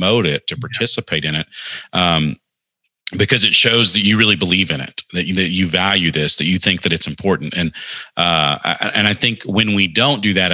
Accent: American